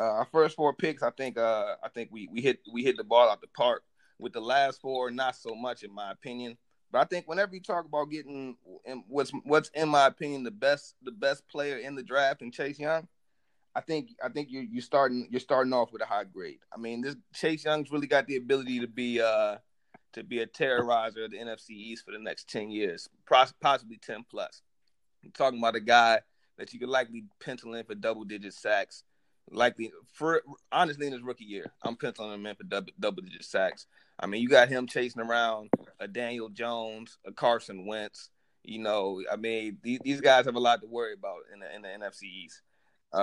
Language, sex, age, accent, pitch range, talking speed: English, male, 30-49, American, 115-140 Hz, 220 wpm